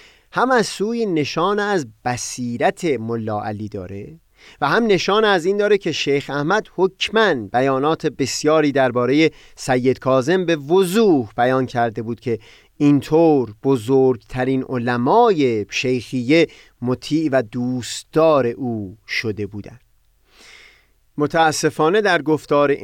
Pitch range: 125-175 Hz